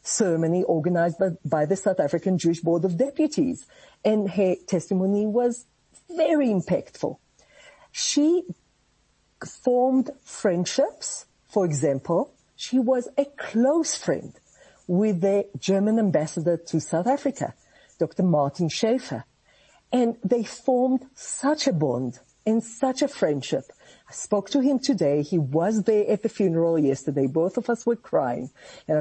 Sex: female